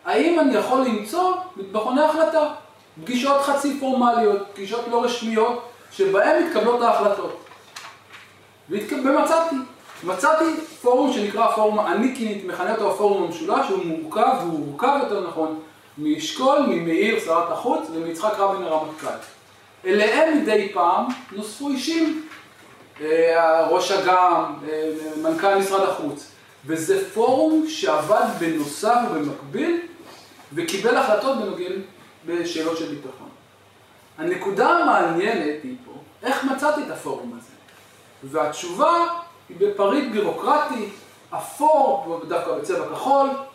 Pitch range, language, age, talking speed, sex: 195-295 Hz, Hebrew, 20-39, 105 wpm, male